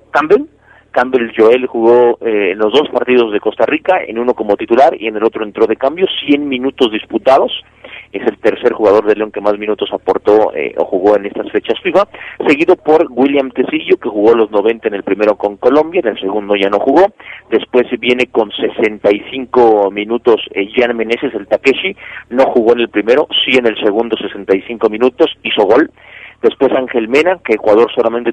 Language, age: Spanish, 40-59